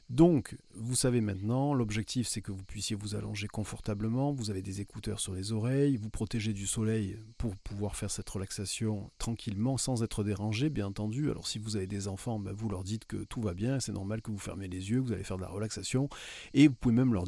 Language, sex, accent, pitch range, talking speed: French, male, French, 100-120 Hz, 230 wpm